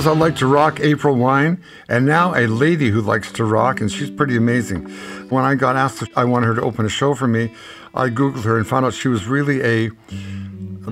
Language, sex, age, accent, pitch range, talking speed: English, male, 60-79, American, 105-130 Hz, 235 wpm